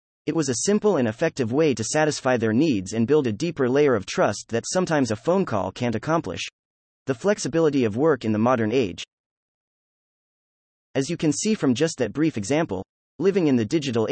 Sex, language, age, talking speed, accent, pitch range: male, English, 30-49, 195 wpm, American, 110-160 Hz